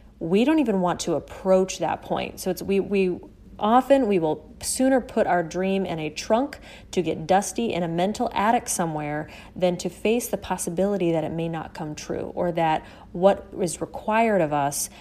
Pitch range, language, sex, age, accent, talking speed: 165-200 Hz, English, female, 30-49, American, 190 wpm